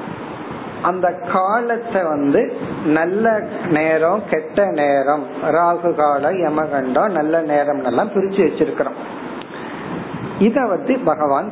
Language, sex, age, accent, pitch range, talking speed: Tamil, male, 50-69, native, 160-215 Hz, 70 wpm